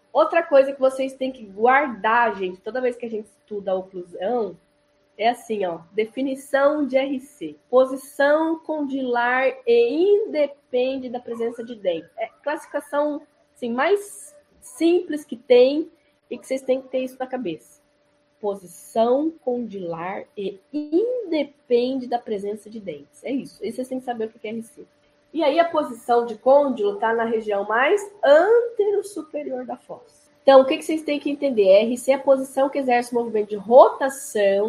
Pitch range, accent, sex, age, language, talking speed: 220-305 Hz, Brazilian, female, 10-29, Portuguese, 170 wpm